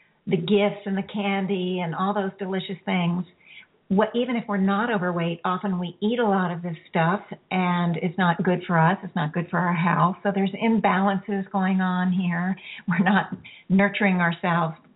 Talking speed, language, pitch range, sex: 185 wpm, English, 175-200 Hz, female